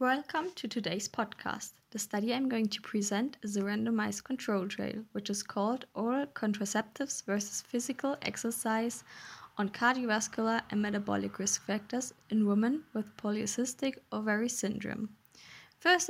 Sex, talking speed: female, 135 wpm